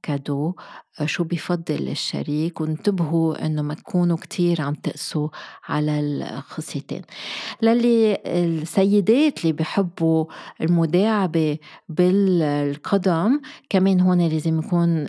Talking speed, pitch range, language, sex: 90 wpm, 160-195 Hz, Arabic, female